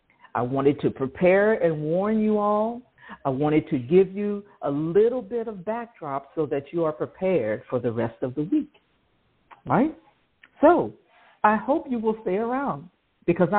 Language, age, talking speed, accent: English, 50-69, 170 wpm, American